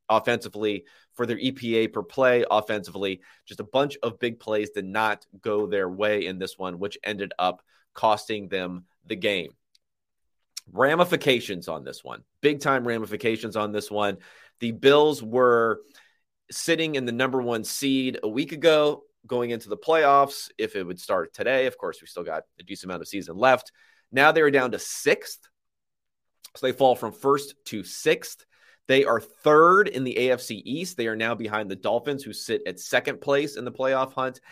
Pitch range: 105-140 Hz